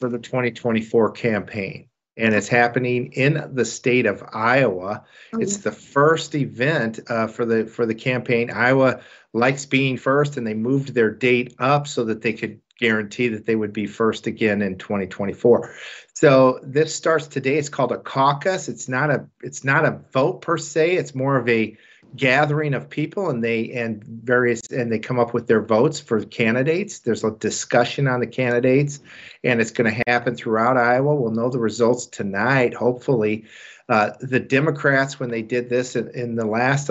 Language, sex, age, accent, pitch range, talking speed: Italian, male, 50-69, American, 110-130 Hz, 185 wpm